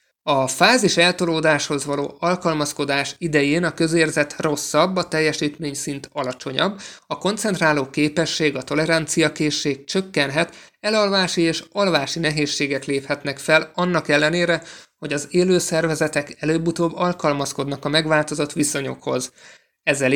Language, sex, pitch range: Hungarian, male, 145-165 Hz